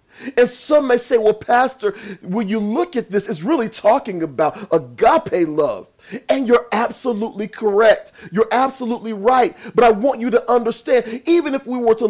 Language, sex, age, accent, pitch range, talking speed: English, male, 40-59, American, 165-255 Hz, 175 wpm